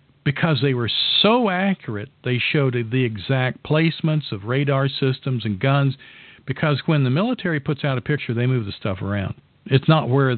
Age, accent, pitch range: 50-69, American, 120-150 Hz